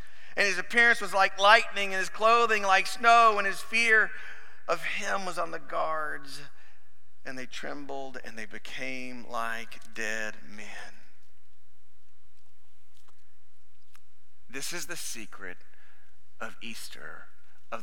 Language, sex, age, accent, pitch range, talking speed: English, male, 40-59, American, 90-130 Hz, 120 wpm